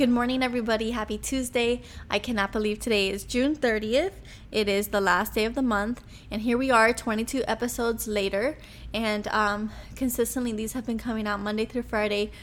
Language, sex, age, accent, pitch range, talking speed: English, female, 10-29, American, 210-240 Hz, 185 wpm